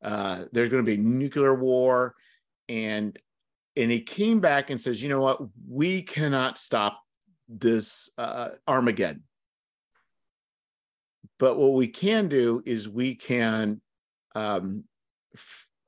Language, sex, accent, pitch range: English, male, American, 105-135 Hz